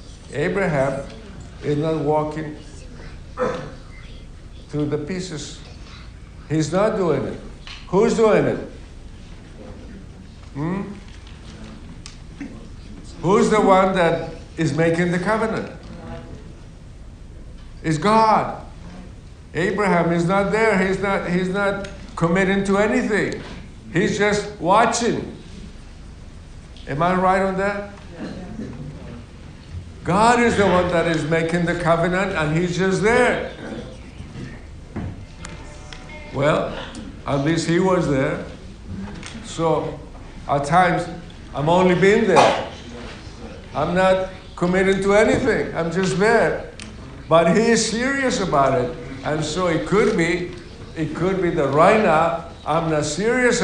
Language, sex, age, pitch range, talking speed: English, male, 60-79, 125-195 Hz, 110 wpm